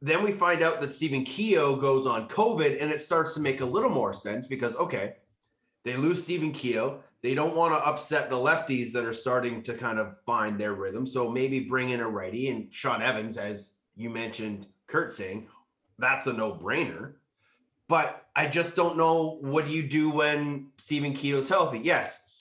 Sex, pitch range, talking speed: male, 120-150 Hz, 195 wpm